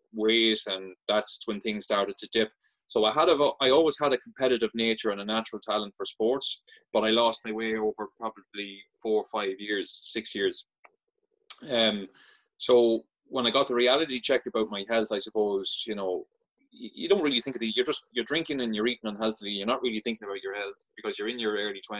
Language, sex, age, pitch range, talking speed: English, male, 20-39, 110-145 Hz, 215 wpm